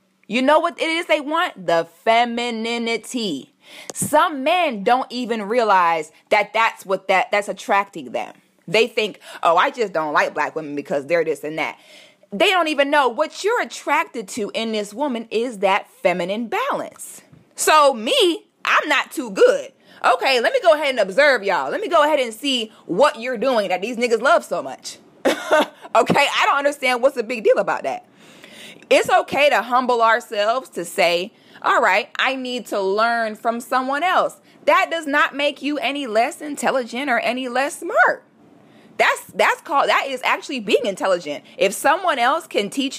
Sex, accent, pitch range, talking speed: female, American, 225-310 Hz, 180 wpm